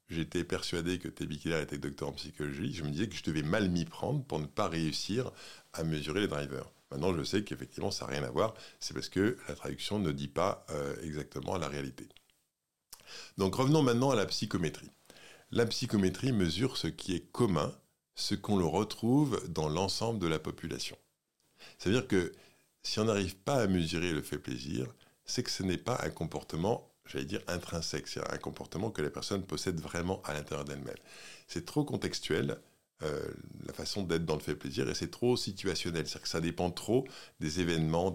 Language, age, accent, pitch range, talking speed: French, 50-69, French, 75-100 Hz, 190 wpm